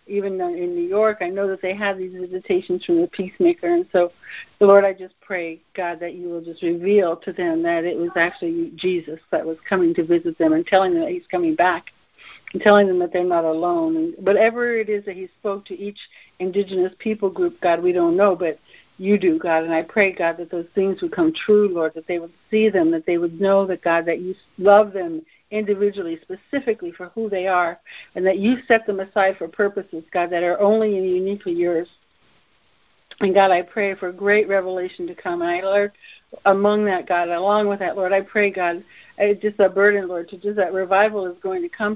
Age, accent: 60-79, American